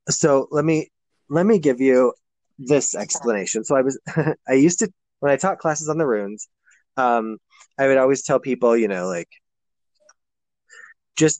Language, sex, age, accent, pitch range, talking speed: English, male, 20-39, American, 115-145 Hz, 170 wpm